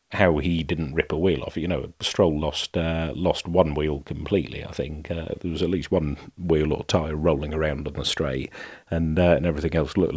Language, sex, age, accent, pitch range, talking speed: English, male, 40-59, British, 75-90 Hz, 225 wpm